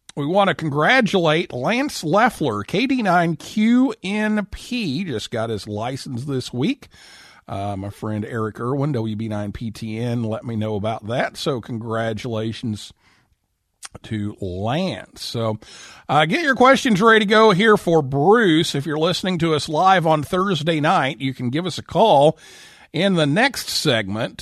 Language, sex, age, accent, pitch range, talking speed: English, male, 50-69, American, 115-190 Hz, 145 wpm